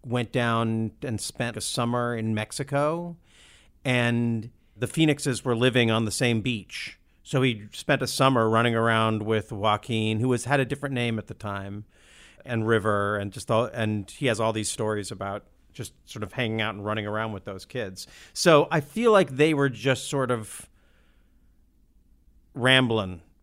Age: 40-59